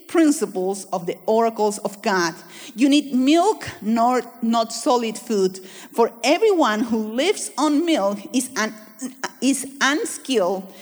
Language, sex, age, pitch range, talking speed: English, female, 50-69, 205-270 Hz, 130 wpm